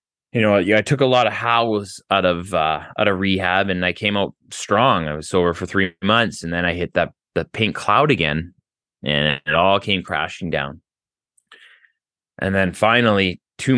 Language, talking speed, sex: English, 190 wpm, male